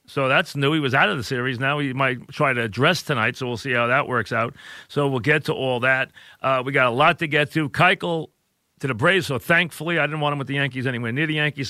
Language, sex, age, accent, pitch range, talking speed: English, male, 40-59, American, 125-150 Hz, 275 wpm